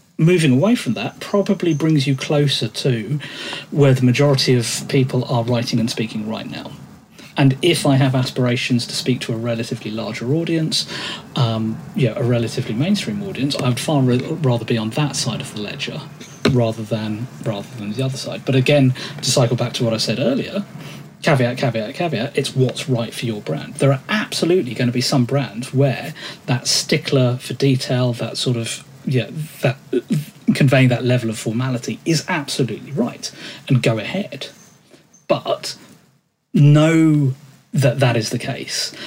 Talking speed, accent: 175 wpm, British